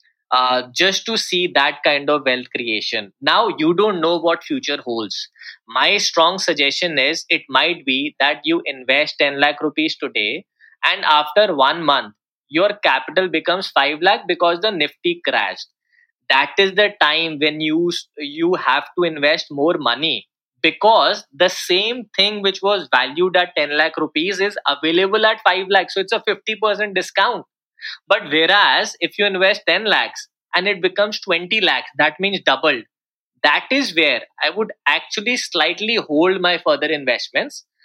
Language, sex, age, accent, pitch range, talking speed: English, male, 20-39, Indian, 155-210 Hz, 160 wpm